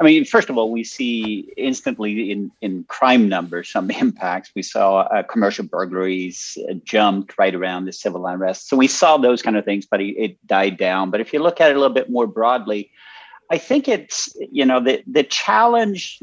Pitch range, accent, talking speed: 105-145 Hz, American, 205 wpm